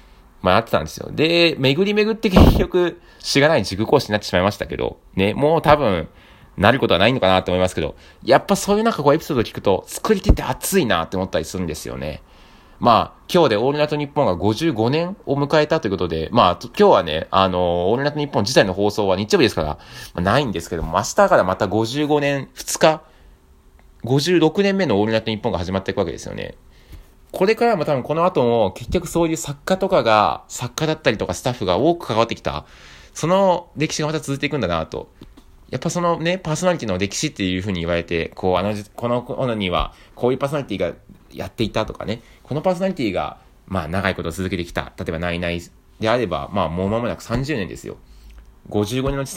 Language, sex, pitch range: Japanese, male, 95-155 Hz